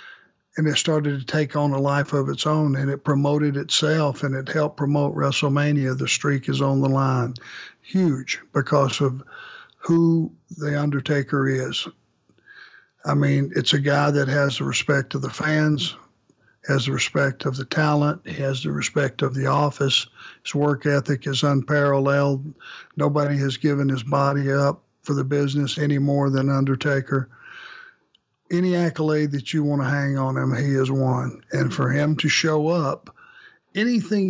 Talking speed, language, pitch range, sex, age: 165 wpm, English, 140-155 Hz, male, 60-79